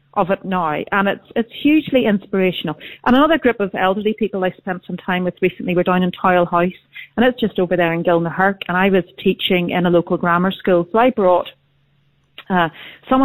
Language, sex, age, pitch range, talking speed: English, female, 40-59, 175-215 Hz, 210 wpm